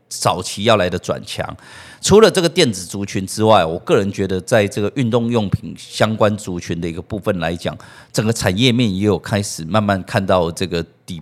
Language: Chinese